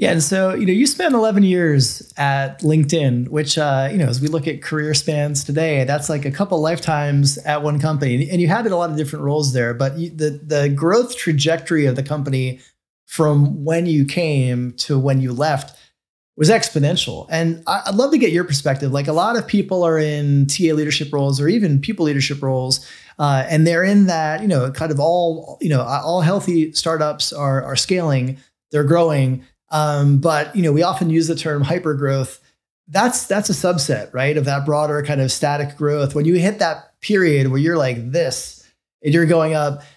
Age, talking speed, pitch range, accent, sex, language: 30-49, 205 wpm, 140-175 Hz, American, male, English